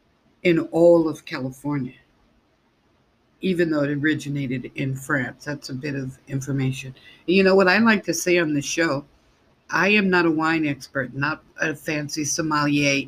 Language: English